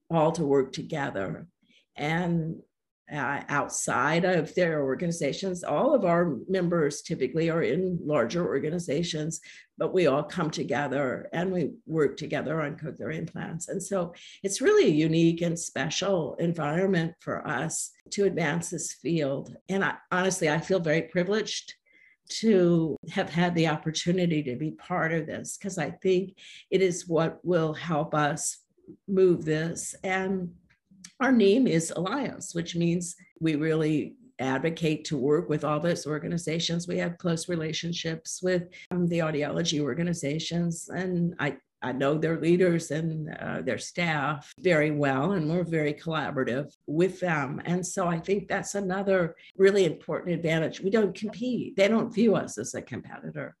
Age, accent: 50-69, American